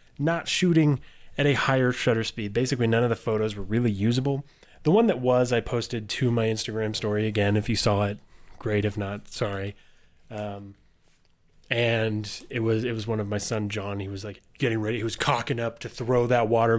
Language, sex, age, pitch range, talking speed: English, male, 20-39, 105-130 Hz, 205 wpm